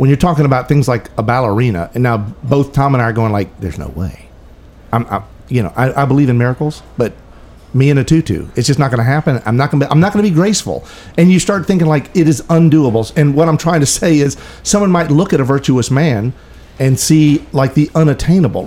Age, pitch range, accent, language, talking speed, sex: 50-69, 120-160 Hz, American, English, 240 wpm, male